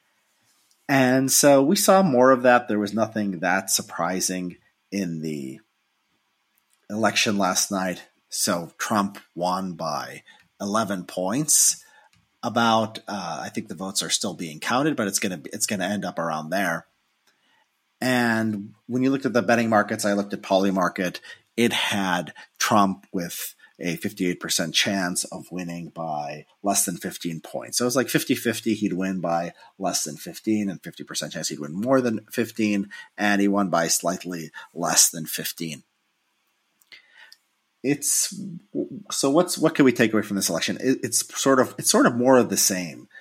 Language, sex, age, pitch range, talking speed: English, male, 30-49, 90-125 Hz, 165 wpm